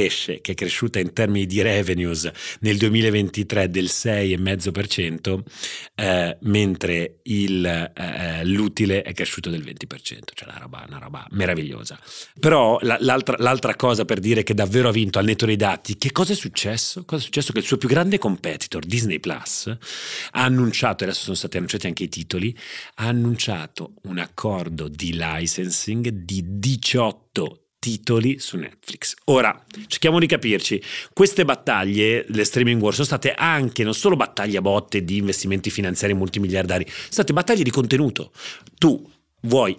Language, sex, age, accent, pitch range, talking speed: Italian, male, 40-59, native, 95-125 Hz, 155 wpm